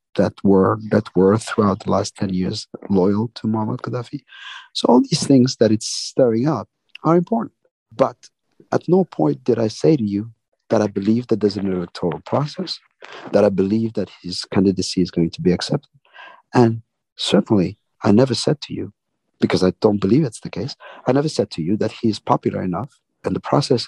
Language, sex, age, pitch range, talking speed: English, male, 50-69, 100-135 Hz, 195 wpm